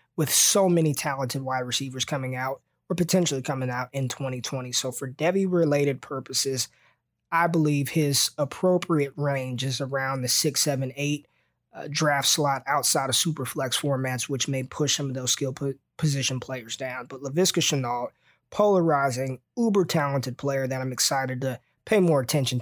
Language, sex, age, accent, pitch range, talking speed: English, male, 20-39, American, 130-155 Hz, 160 wpm